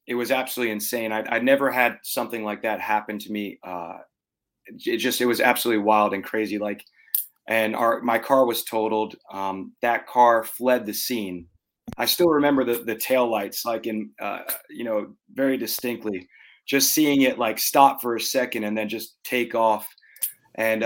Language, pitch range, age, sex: English, 110-130 Hz, 30-49, male